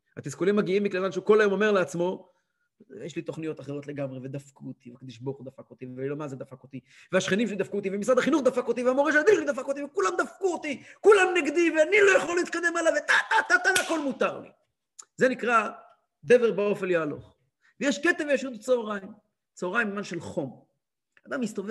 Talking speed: 180 wpm